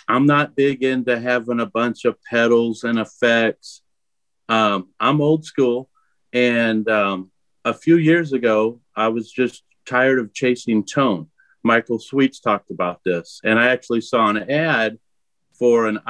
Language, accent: English, American